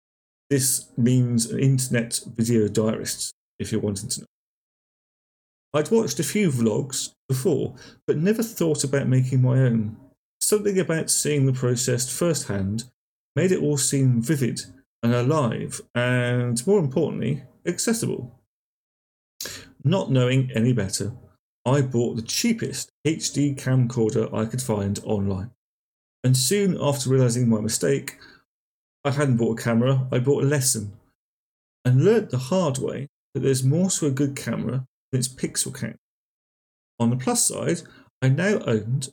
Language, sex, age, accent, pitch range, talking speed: English, male, 40-59, British, 115-145 Hz, 145 wpm